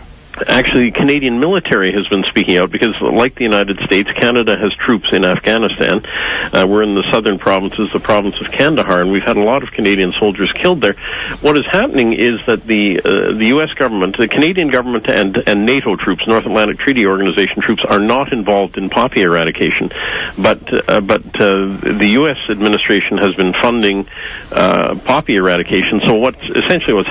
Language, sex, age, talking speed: English, male, 50-69, 185 wpm